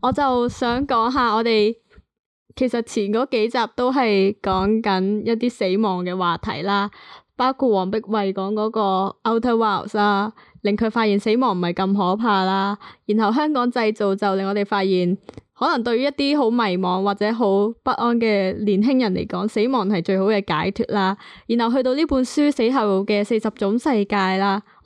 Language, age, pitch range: Chinese, 20-39, 200-245 Hz